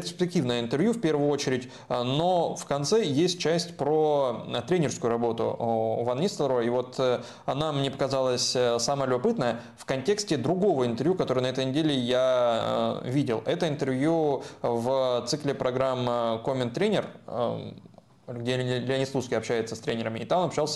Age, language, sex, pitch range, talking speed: 20-39, Russian, male, 120-150 Hz, 145 wpm